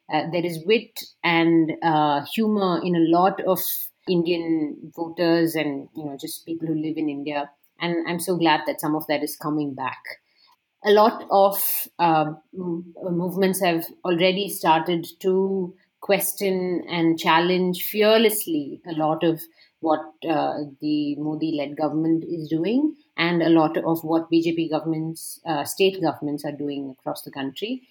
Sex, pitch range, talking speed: female, 160-185 Hz, 155 wpm